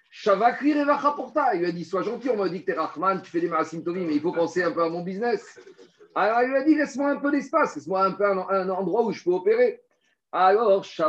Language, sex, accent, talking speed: French, male, French, 260 wpm